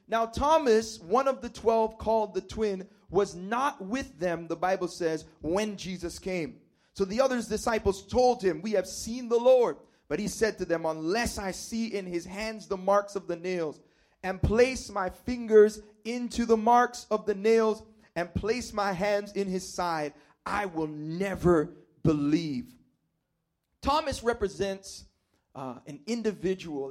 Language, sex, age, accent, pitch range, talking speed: English, male, 30-49, American, 165-225 Hz, 160 wpm